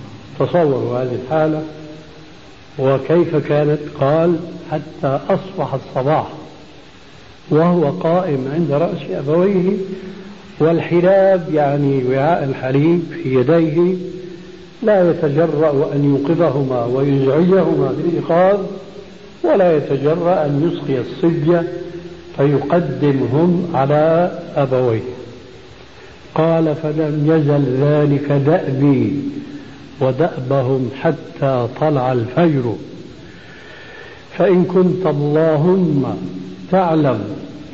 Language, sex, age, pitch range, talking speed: Arabic, male, 70-89, 140-175 Hz, 75 wpm